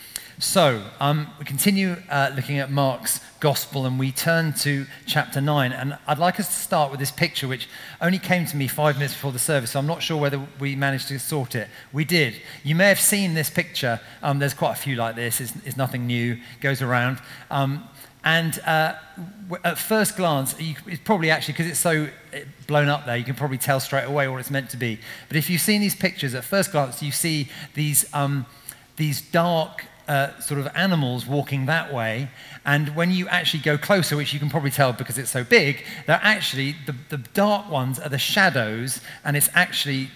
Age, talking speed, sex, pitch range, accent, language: 40-59, 215 wpm, male, 135-160 Hz, British, English